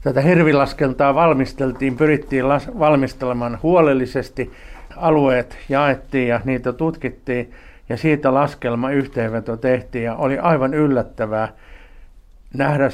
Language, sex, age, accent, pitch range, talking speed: Finnish, male, 50-69, native, 120-150 Hz, 95 wpm